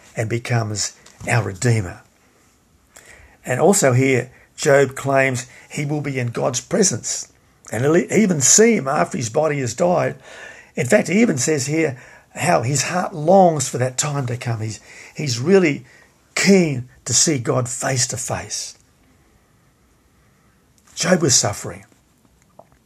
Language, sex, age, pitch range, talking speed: English, male, 50-69, 120-150 Hz, 140 wpm